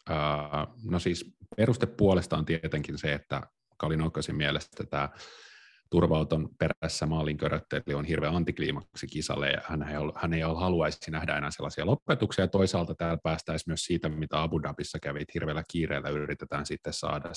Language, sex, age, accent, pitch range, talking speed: Finnish, male, 30-49, native, 75-90 Hz, 150 wpm